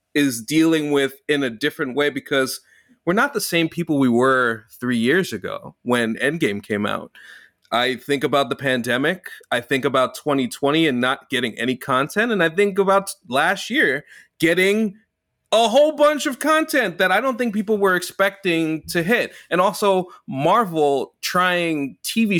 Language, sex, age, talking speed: English, male, 30-49, 165 wpm